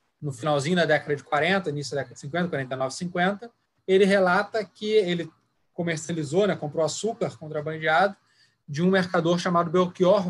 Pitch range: 155-215 Hz